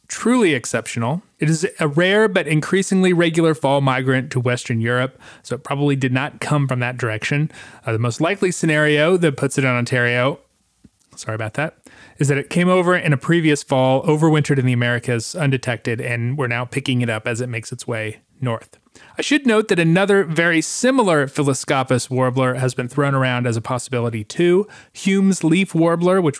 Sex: male